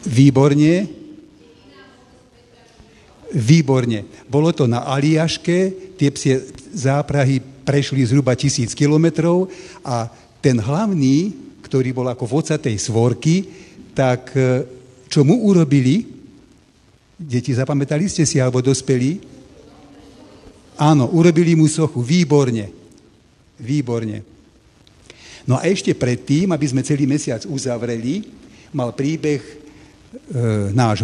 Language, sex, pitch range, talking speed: Slovak, male, 125-160 Hz, 95 wpm